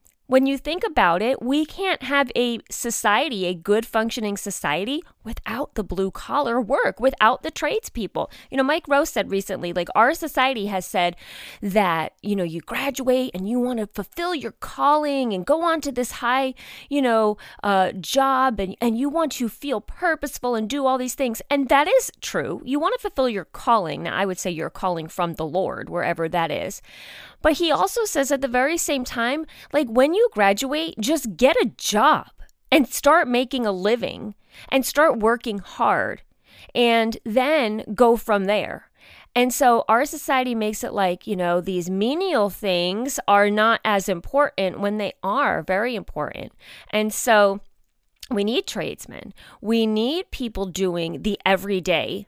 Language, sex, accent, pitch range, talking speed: English, female, American, 205-280 Hz, 175 wpm